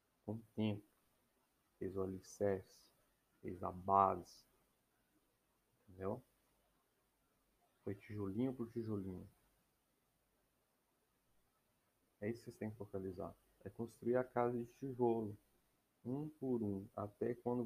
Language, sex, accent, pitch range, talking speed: Portuguese, male, Brazilian, 95-120 Hz, 110 wpm